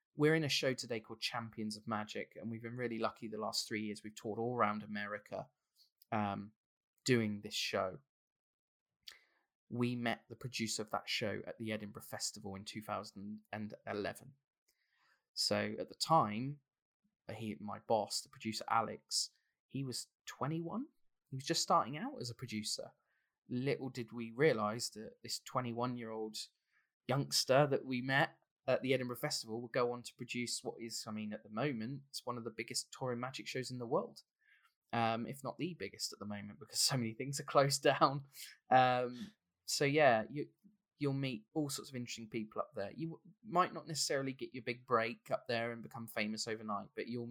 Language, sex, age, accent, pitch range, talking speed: English, male, 20-39, British, 110-130 Hz, 180 wpm